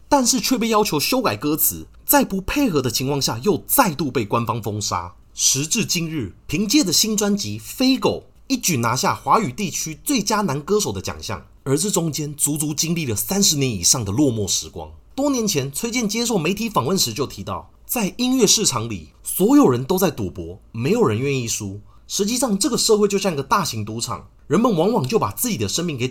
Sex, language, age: male, Chinese, 30-49